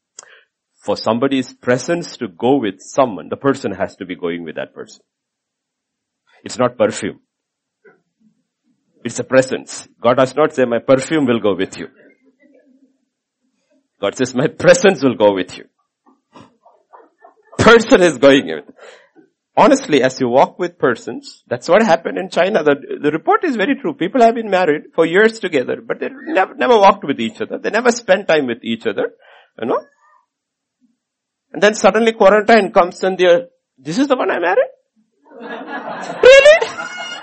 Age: 50-69